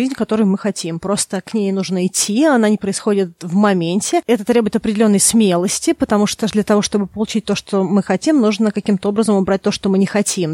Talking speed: 210 wpm